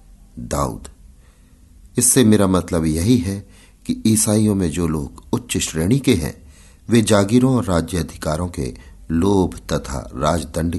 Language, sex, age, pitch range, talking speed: Hindi, male, 50-69, 75-105 Hz, 135 wpm